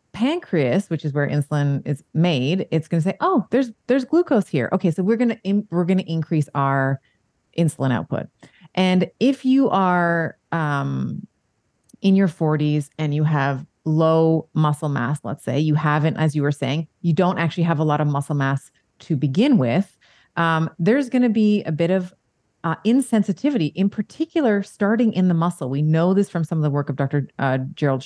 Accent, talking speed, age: American, 195 wpm, 30-49